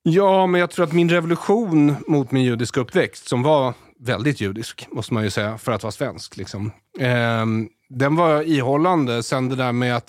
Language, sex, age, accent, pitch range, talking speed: Swedish, male, 30-49, native, 120-155 Hz, 195 wpm